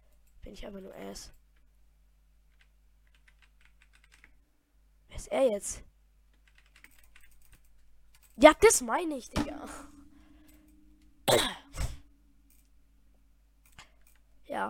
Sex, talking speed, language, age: female, 55 wpm, German, 20-39